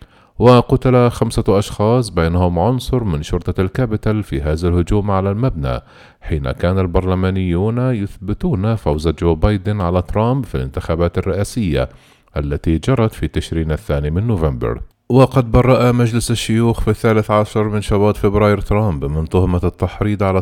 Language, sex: Arabic, male